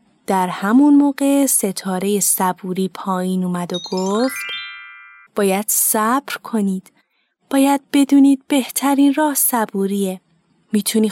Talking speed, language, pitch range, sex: 95 wpm, Persian, 190-260 Hz, female